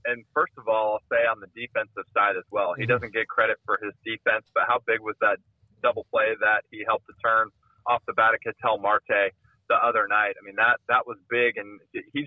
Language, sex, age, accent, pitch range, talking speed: English, male, 20-39, American, 110-140 Hz, 235 wpm